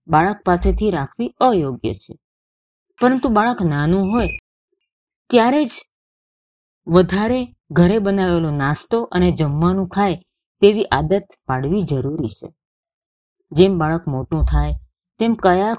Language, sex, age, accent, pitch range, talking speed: Gujarati, female, 20-39, native, 150-205 Hz, 110 wpm